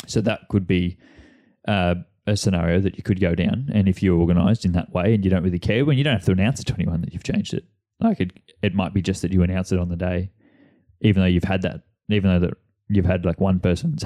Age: 20-39